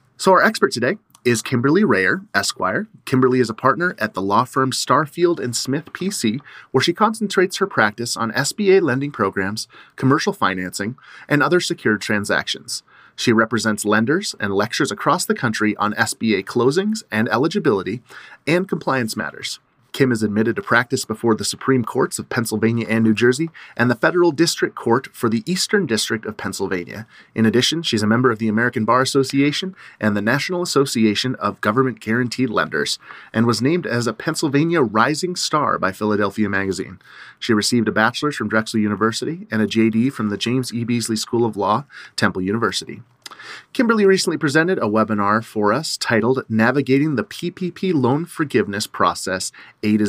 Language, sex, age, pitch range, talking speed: English, male, 30-49, 110-145 Hz, 170 wpm